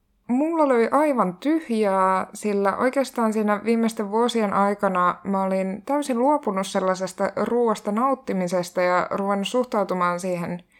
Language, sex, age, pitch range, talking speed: Finnish, female, 20-39, 185-240 Hz, 115 wpm